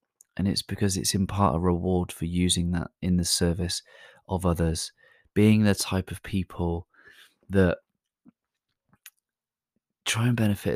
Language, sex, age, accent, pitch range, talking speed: English, male, 20-39, British, 85-95 Hz, 140 wpm